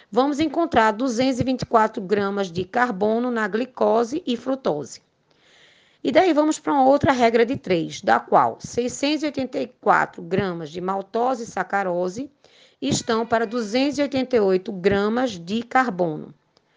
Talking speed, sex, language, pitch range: 120 wpm, female, Portuguese, 195-265 Hz